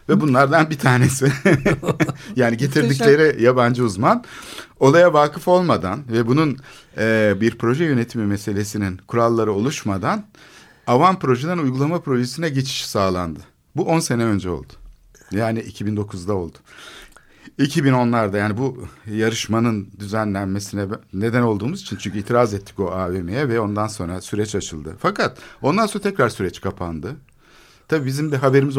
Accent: native